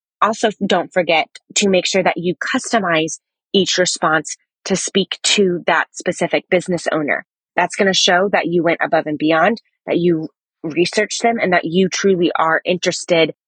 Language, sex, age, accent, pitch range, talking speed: English, female, 20-39, American, 175-210 Hz, 170 wpm